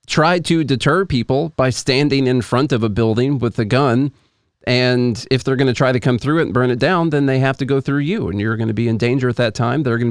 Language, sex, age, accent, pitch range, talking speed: English, male, 40-59, American, 115-150 Hz, 280 wpm